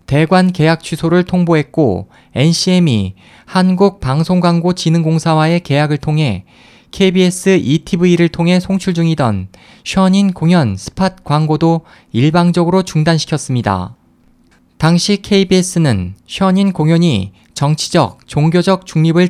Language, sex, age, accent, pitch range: Korean, male, 20-39, native, 145-180 Hz